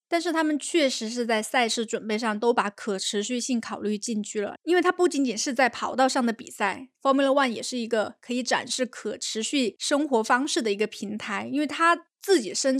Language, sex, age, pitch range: Chinese, female, 20-39, 215-270 Hz